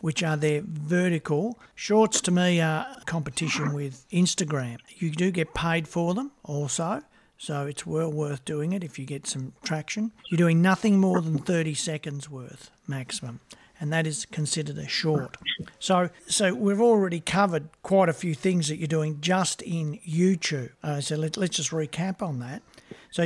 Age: 50-69